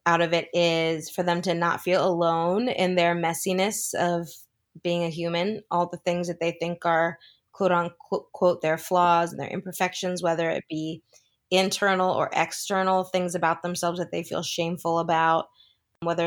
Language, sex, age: English, female, 20-39